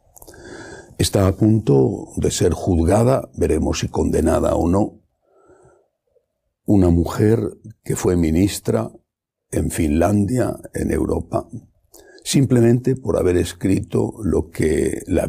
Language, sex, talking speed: English, male, 105 wpm